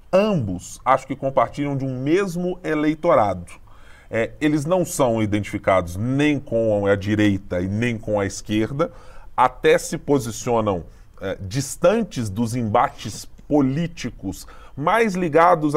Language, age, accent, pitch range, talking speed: Portuguese, 20-39, Brazilian, 105-155 Hz, 120 wpm